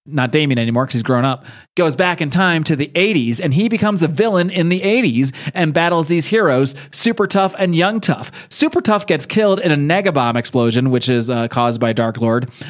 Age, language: 30-49, English